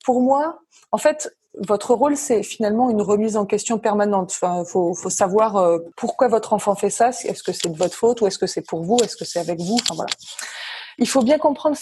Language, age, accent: French, 20-39, French